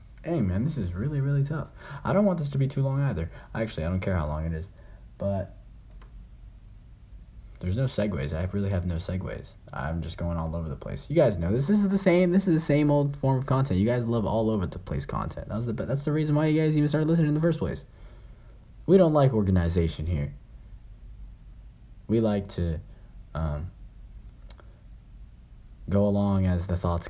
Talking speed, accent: 210 wpm, American